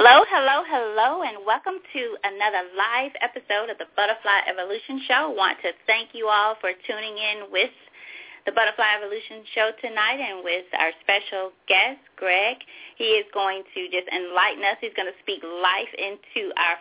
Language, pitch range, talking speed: English, 185-250 Hz, 175 wpm